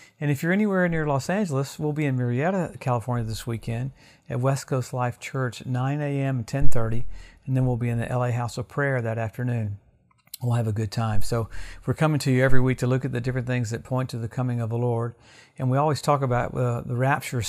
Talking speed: 235 wpm